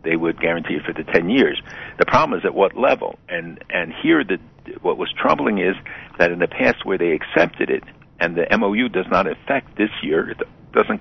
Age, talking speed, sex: 60-79, 220 wpm, male